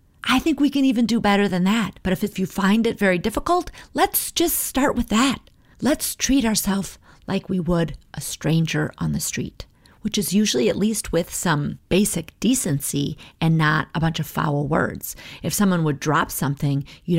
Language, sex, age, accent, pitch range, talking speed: English, female, 30-49, American, 165-240 Hz, 190 wpm